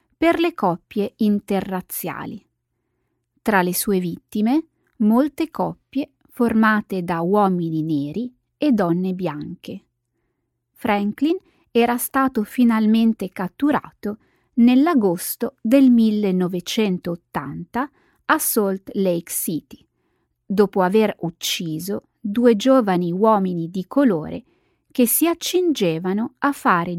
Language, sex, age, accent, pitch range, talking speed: Italian, female, 30-49, native, 180-255 Hz, 95 wpm